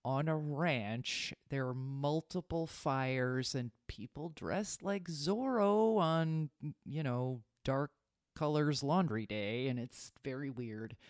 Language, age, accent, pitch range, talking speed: English, 30-49, American, 120-150 Hz, 125 wpm